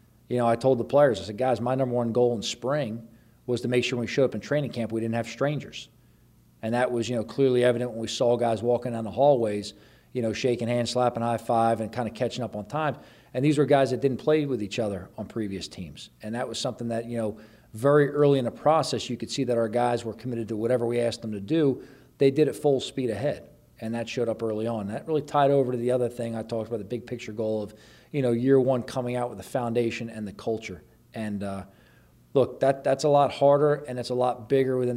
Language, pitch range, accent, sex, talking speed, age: English, 110-130 Hz, American, male, 265 wpm, 40-59